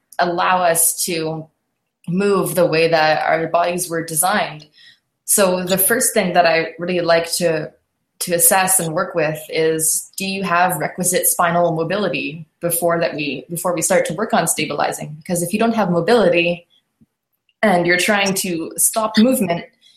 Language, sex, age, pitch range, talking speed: English, female, 20-39, 160-185 Hz, 160 wpm